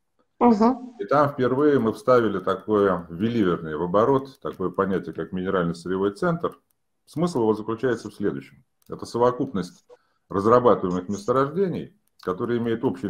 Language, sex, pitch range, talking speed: Russian, male, 95-130 Hz, 125 wpm